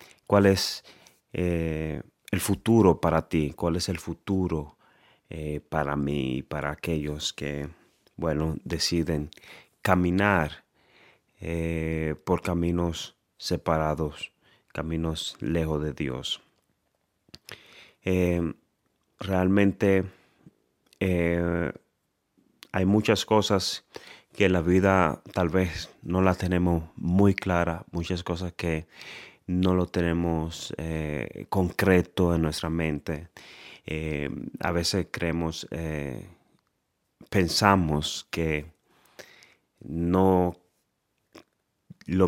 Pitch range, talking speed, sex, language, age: 80-90 Hz, 90 wpm, male, Swedish, 30-49